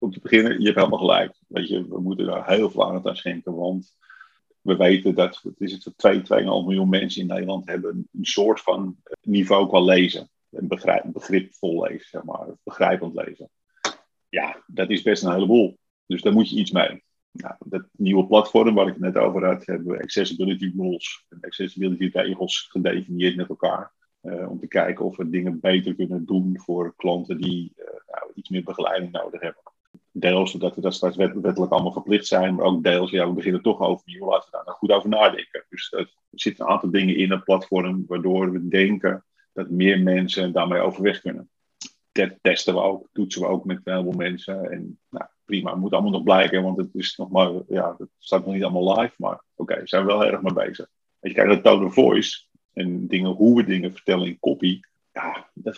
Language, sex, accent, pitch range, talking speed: Dutch, male, Dutch, 90-95 Hz, 210 wpm